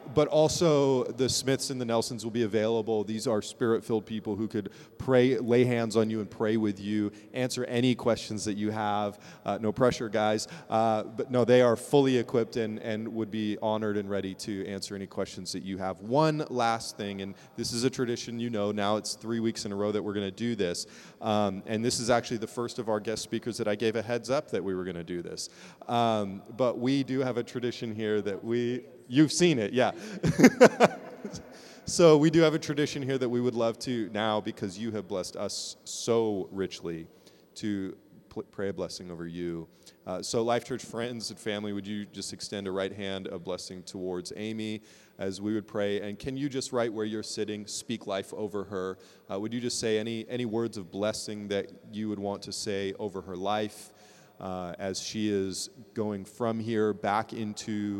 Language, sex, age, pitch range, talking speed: English, male, 30-49, 100-120 Hz, 215 wpm